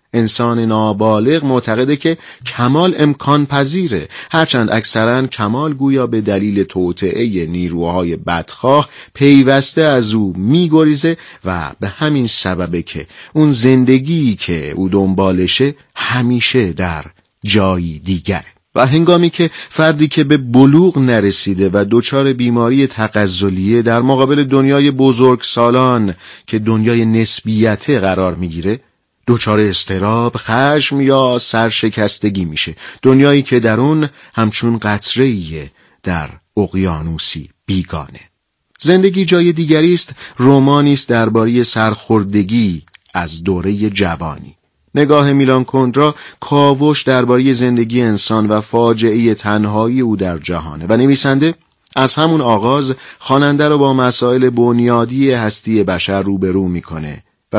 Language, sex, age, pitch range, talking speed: Persian, male, 40-59, 100-135 Hz, 115 wpm